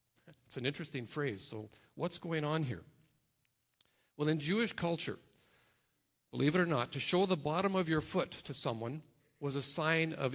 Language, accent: English, American